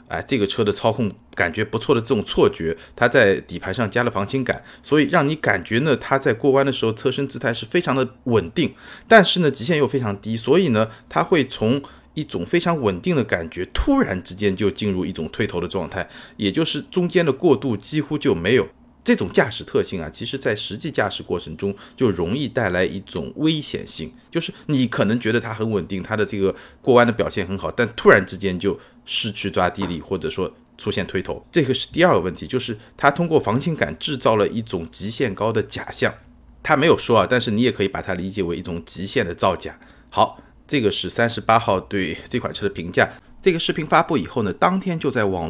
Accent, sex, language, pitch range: native, male, Chinese, 100-145 Hz